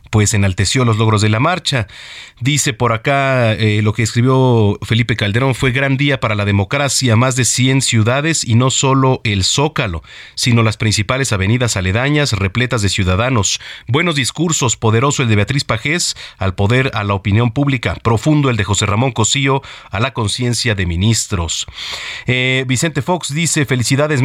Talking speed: 170 wpm